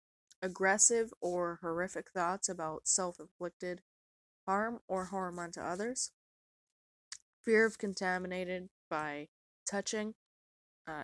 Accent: American